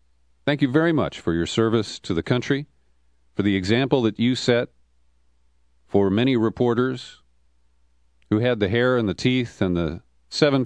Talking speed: 165 wpm